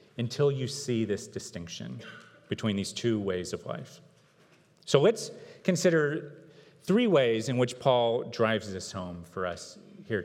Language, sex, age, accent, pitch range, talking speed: English, male, 40-59, American, 115-150 Hz, 145 wpm